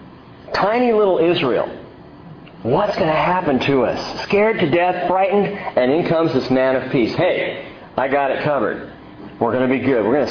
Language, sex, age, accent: English, male, 40-59, American